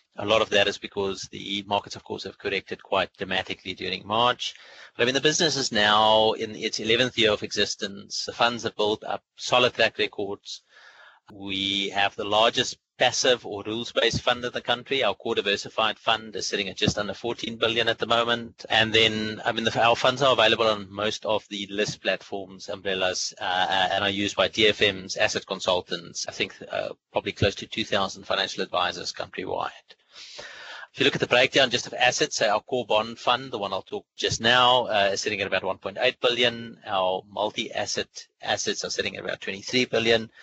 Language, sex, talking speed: English, male, 195 wpm